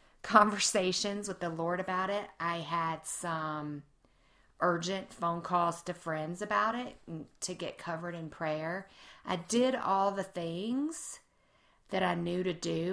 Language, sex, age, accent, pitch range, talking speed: English, female, 40-59, American, 165-190 Hz, 145 wpm